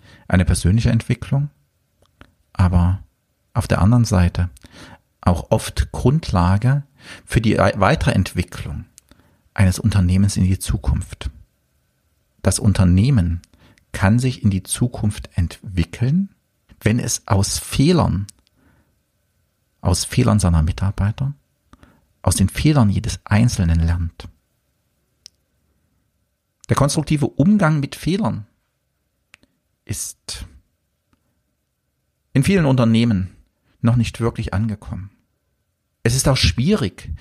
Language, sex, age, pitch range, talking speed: German, male, 50-69, 90-115 Hz, 95 wpm